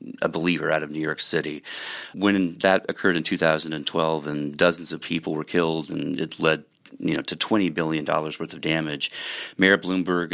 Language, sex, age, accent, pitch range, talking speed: English, male, 30-49, American, 80-90 Hz, 185 wpm